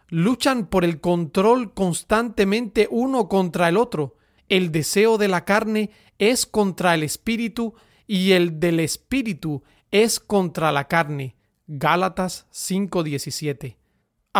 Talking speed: 115 wpm